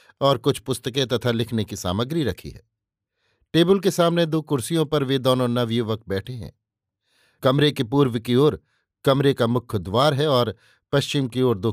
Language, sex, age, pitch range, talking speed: Hindi, male, 50-69, 110-140 Hz, 180 wpm